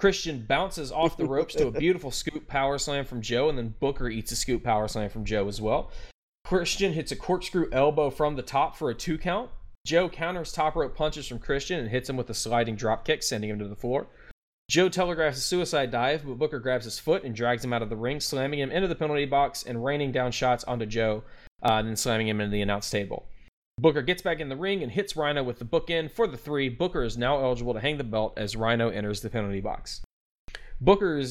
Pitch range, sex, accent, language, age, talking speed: 115-155 Hz, male, American, English, 20-39, 240 wpm